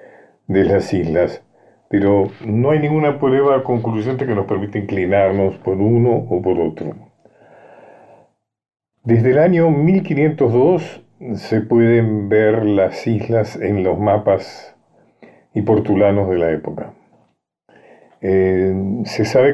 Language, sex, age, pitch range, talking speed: Spanish, male, 50-69, 95-120 Hz, 115 wpm